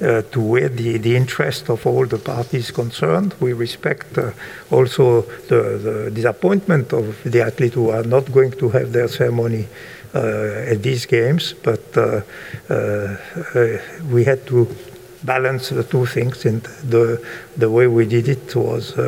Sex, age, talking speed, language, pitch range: male, 60-79, 165 wpm, Finnish, 90-120 Hz